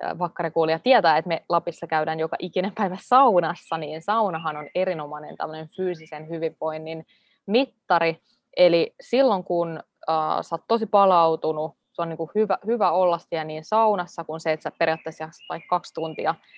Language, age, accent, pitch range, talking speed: Finnish, 20-39, native, 160-200 Hz, 155 wpm